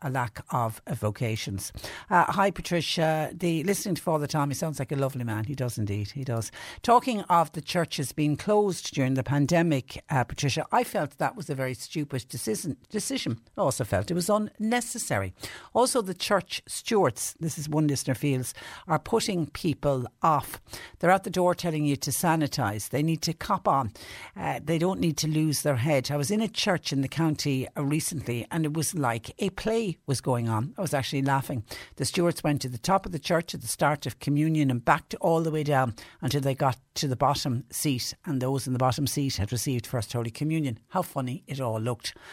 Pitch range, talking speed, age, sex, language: 125-170 Hz, 210 wpm, 60-79, female, English